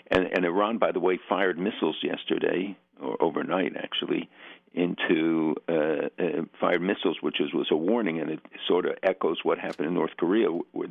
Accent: American